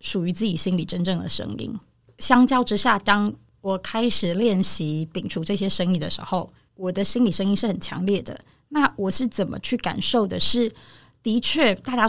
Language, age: Chinese, 20-39